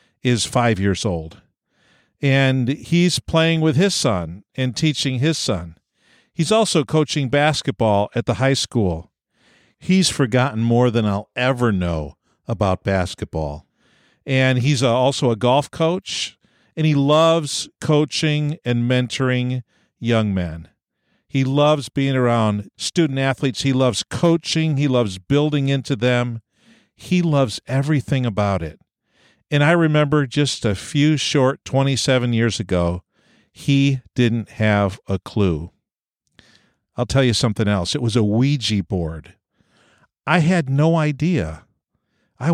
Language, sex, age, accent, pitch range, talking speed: English, male, 50-69, American, 110-145 Hz, 135 wpm